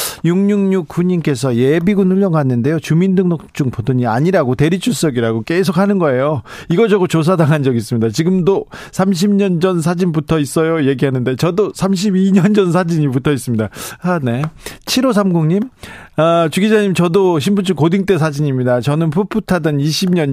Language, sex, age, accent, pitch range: Korean, male, 40-59, native, 135-185 Hz